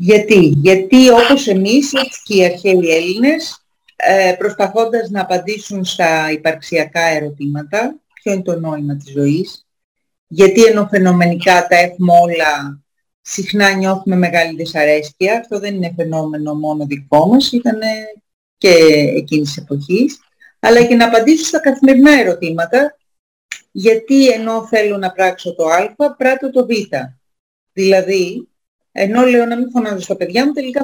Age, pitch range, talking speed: 40-59, 175-235 Hz, 135 wpm